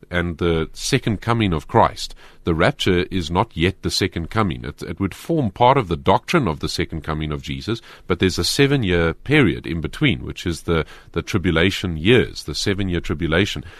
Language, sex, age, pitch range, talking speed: English, male, 40-59, 85-110 Hz, 200 wpm